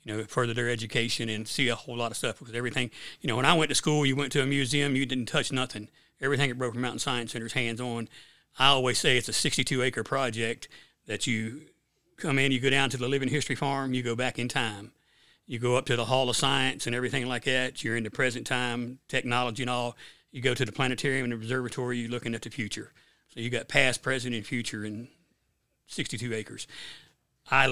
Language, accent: English, American